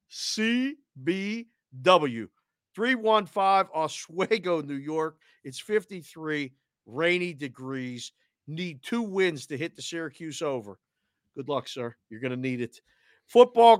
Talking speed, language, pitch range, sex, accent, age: 115 wpm, English, 145-195 Hz, male, American, 50-69